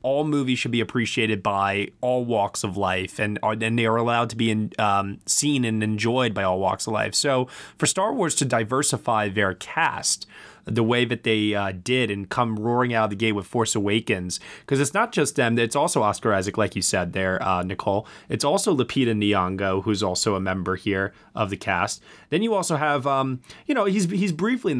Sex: male